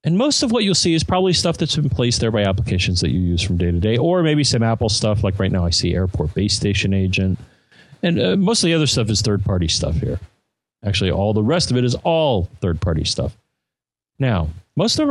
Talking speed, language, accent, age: 245 wpm, English, American, 40-59